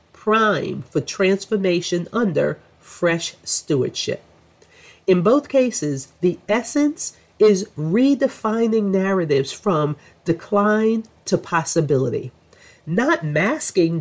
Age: 40-59